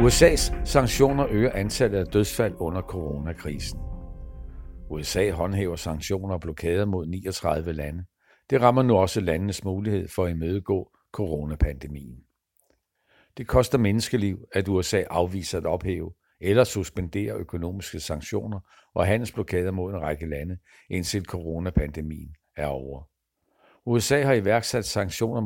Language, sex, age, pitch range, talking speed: Danish, male, 60-79, 80-105 Hz, 125 wpm